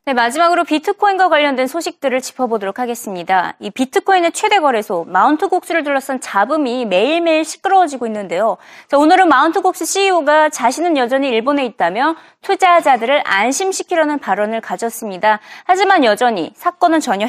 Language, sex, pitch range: Korean, female, 235-345 Hz